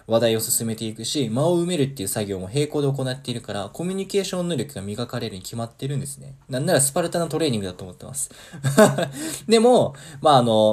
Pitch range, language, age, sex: 110-145 Hz, Japanese, 20-39, male